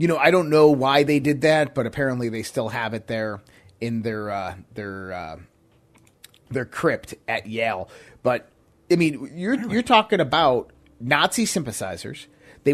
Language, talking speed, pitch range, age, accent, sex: English, 165 wpm, 115-160 Hz, 30-49, American, male